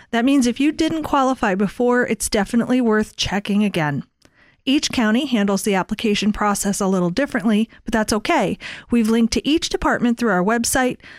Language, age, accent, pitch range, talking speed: English, 40-59, American, 200-260 Hz, 170 wpm